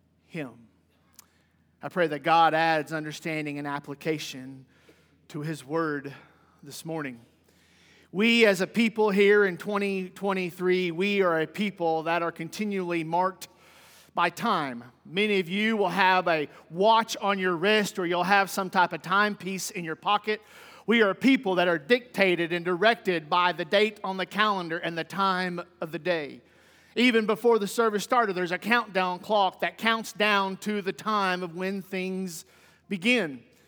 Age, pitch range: 50-69, 180-225 Hz